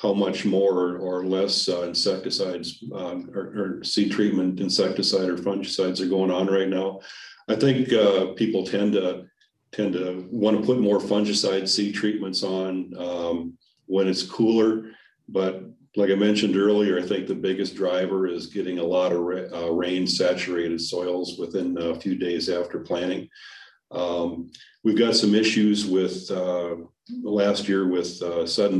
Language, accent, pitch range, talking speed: English, American, 90-105 Hz, 165 wpm